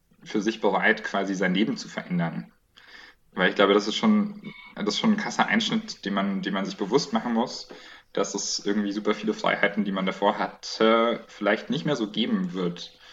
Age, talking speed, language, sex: 20-39, 200 wpm, German, male